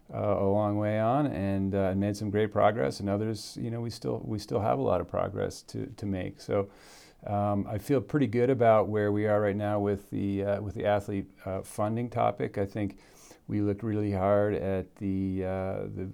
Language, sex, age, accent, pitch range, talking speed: English, male, 40-59, American, 100-110 Hz, 215 wpm